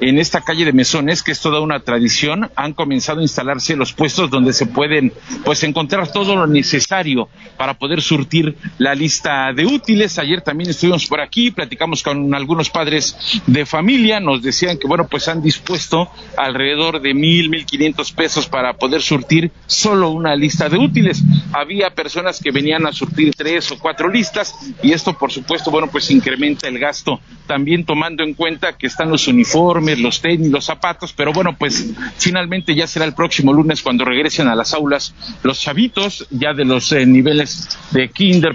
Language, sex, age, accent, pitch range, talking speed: Spanish, male, 50-69, Mexican, 140-175 Hz, 180 wpm